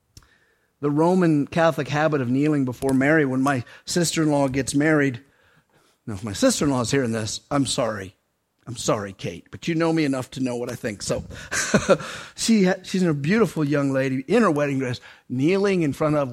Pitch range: 135-195 Hz